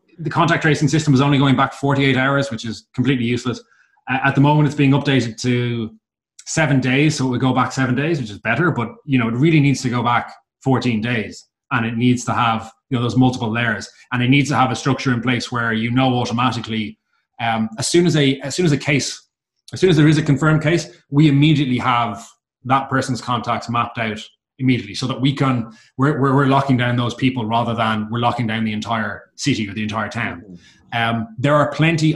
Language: English